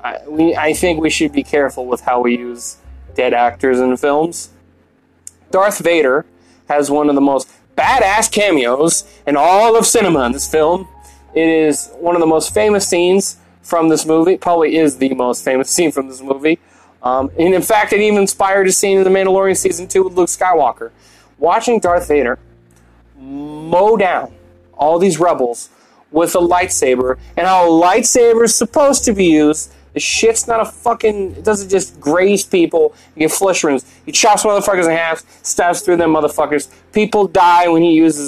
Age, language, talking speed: 20-39, English, 185 wpm